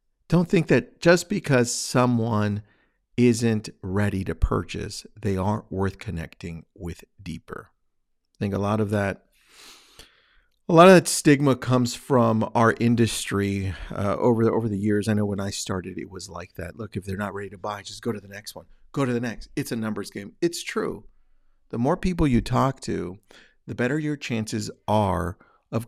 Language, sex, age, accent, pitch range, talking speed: English, male, 50-69, American, 100-125 Hz, 185 wpm